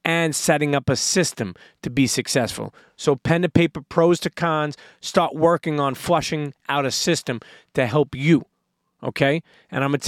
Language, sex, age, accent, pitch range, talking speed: English, male, 30-49, American, 130-170 Hz, 180 wpm